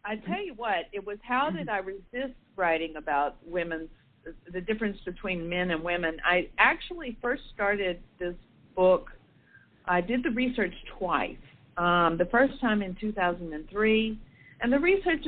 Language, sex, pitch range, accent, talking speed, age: English, female, 175-220 Hz, American, 155 wpm, 50-69